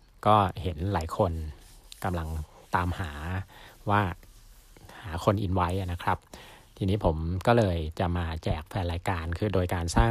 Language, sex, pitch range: Thai, male, 85-105 Hz